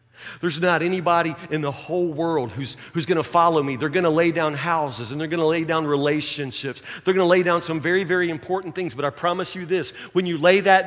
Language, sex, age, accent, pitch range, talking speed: English, male, 40-59, American, 170-225 Hz, 250 wpm